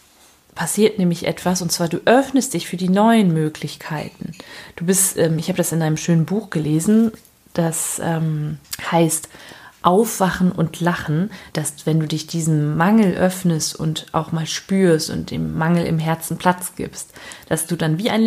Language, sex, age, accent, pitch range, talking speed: German, female, 30-49, German, 160-195 Hz, 170 wpm